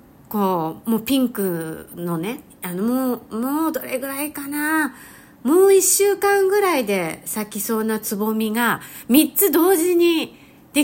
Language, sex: Japanese, female